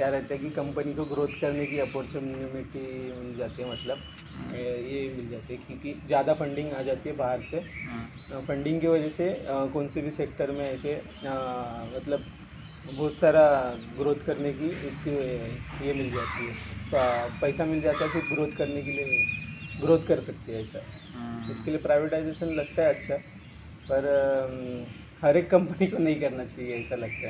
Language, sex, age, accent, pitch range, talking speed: Hindi, male, 30-49, native, 125-145 Hz, 170 wpm